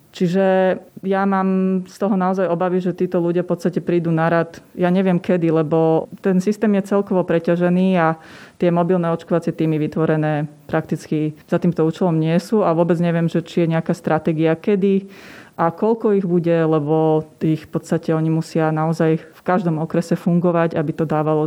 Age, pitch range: 30-49, 160-180 Hz